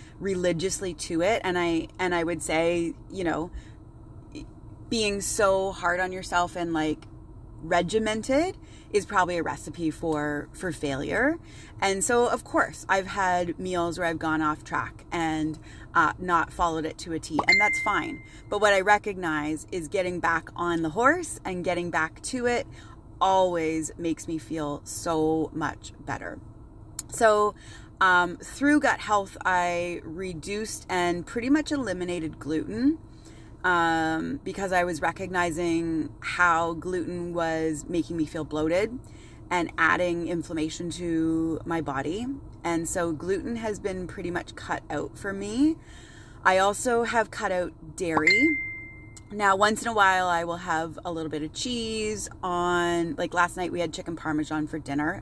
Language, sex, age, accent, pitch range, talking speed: English, female, 30-49, American, 155-190 Hz, 155 wpm